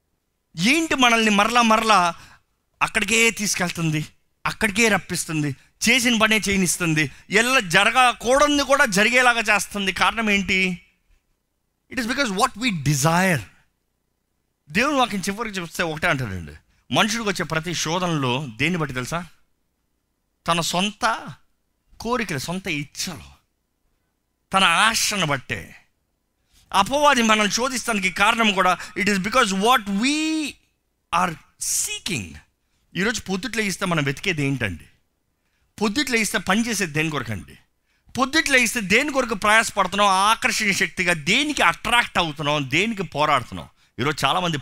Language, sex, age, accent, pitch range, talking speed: Telugu, male, 30-49, native, 150-230 Hz, 110 wpm